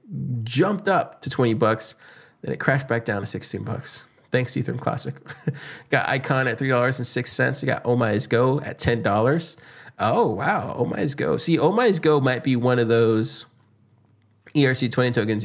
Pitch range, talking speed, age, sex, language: 110-135 Hz, 165 wpm, 20-39, male, English